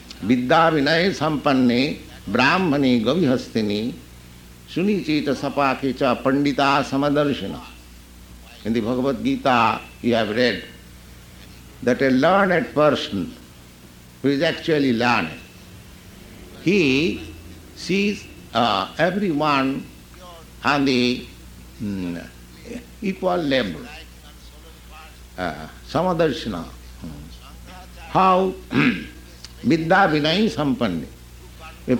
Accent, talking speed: Indian, 60 wpm